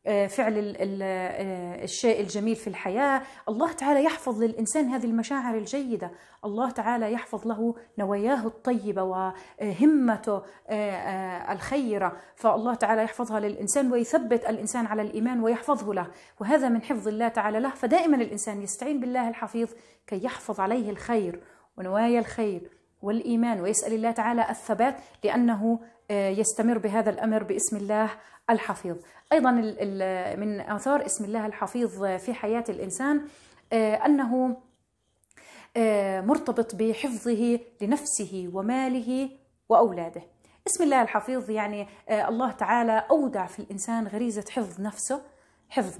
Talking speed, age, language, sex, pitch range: 115 wpm, 30-49, Arabic, female, 205-245 Hz